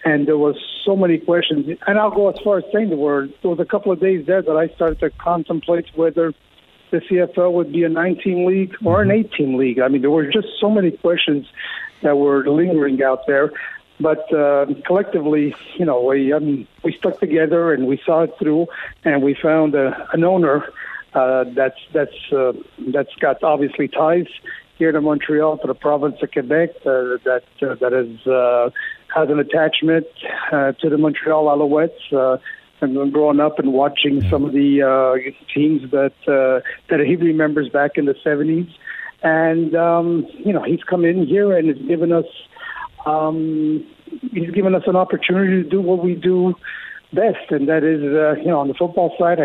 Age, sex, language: 60-79, male, English